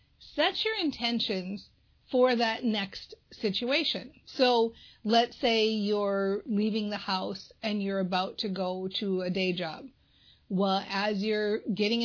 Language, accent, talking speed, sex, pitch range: English, American, 135 wpm, female, 195-245 Hz